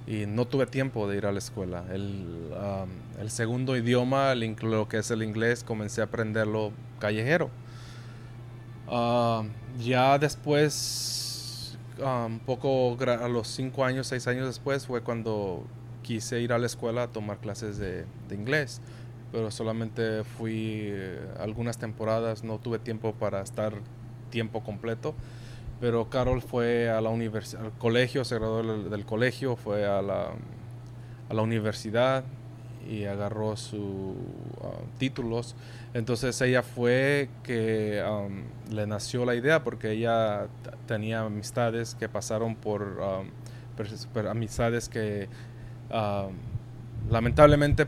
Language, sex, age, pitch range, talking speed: English, male, 20-39, 110-120 Hz, 135 wpm